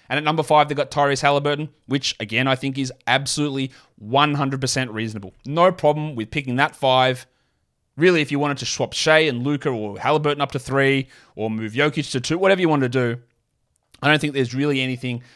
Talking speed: 205 wpm